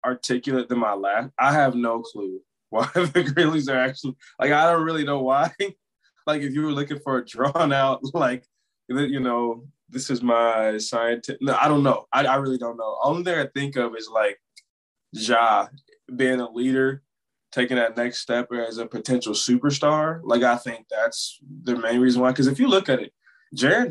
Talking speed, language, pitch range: 195 wpm, English, 115-135 Hz